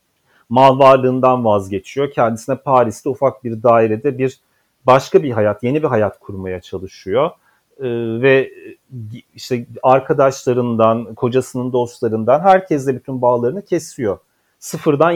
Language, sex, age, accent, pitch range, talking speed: Turkish, male, 40-59, native, 120-155 Hz, 110 wpm